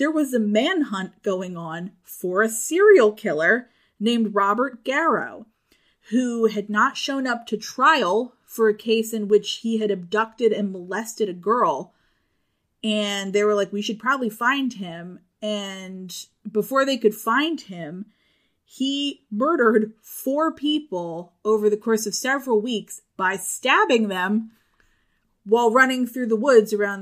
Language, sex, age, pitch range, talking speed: English, female, 30-49, 205-255 Hz, 145 wpm